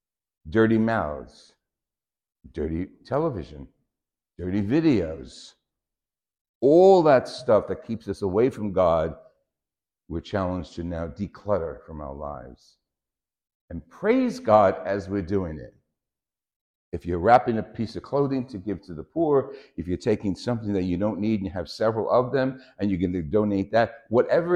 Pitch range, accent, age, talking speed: 85-130 Hz, American, 60-79, 155 wpm